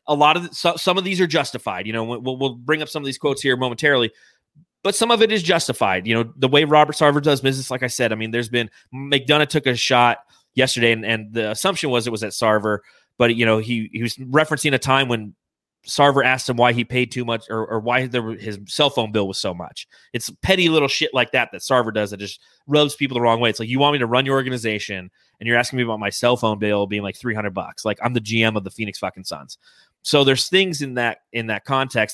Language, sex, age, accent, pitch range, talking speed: English, male, 30-49, American, 115-145 Hz, 265 wpm